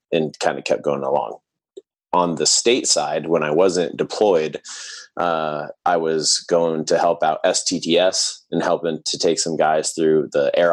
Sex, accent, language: male, American, English